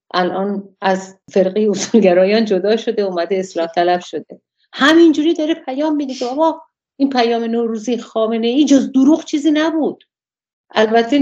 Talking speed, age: 140 wpm, 50-69